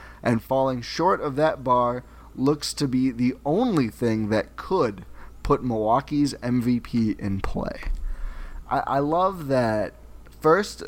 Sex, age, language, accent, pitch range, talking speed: male, 20-39, English, American, 110-140 Hz, 130 wpm